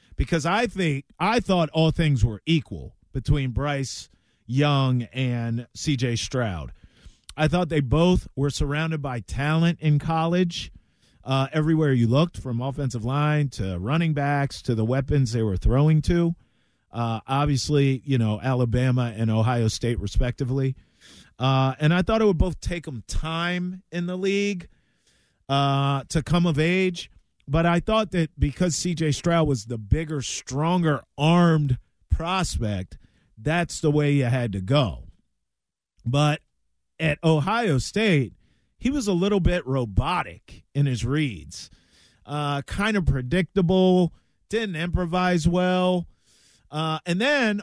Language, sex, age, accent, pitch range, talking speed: English, male, 40-59, American, 120-175 Hz, 140 wpm